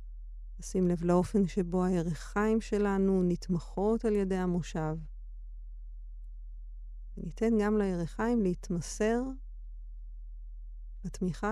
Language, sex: Hebrew, female